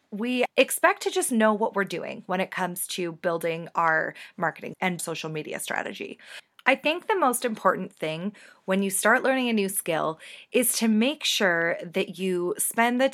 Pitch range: 180-245 Hz